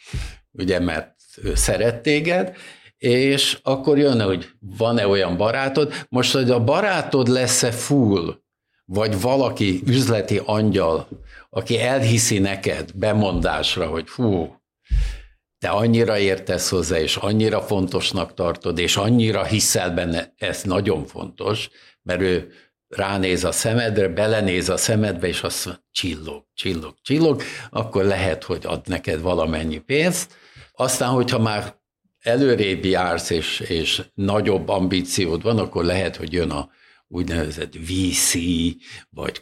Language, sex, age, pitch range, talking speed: Hungarian, male, 60-79, 90-120 Hz, 120 wpm